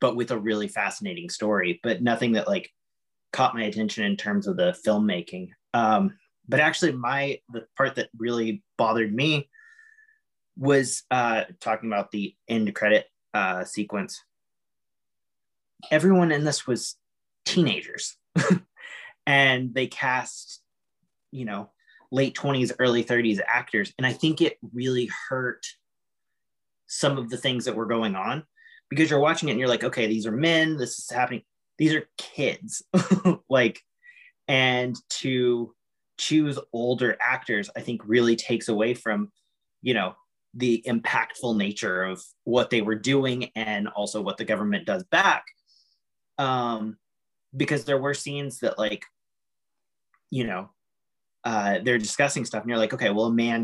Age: 30-49